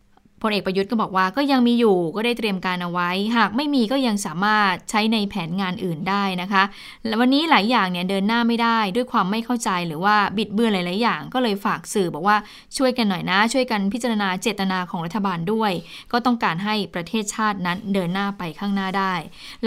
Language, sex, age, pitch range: Thai, female, 10-29, 190-235 Hz